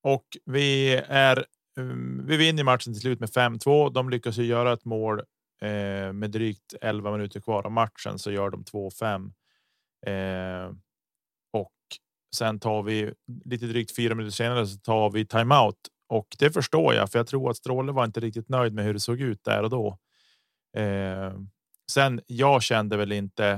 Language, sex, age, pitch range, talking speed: Swedish, male, 30-49, 100-125 Hz, 175 wpm